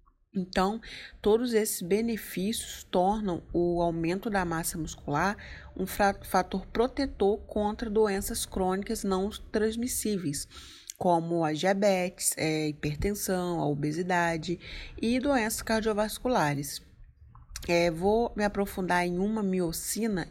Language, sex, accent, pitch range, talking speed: Portuguese, female, Brazilian, 165-205 Hz, 100 wpm